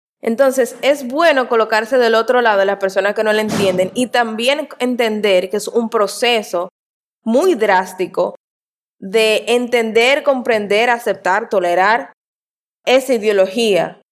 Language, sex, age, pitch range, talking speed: Spanish, female, 20-39, 210-265 Hz, 130 wpm